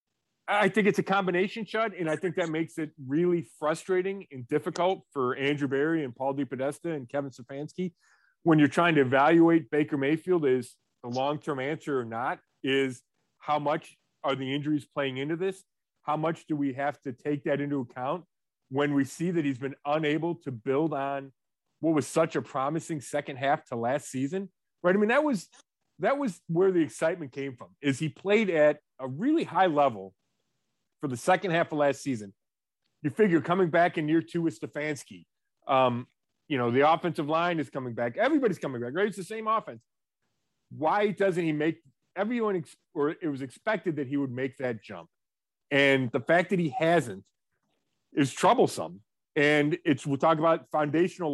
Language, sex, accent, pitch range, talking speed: English, male, American, 140-175 Hz, 185 wpm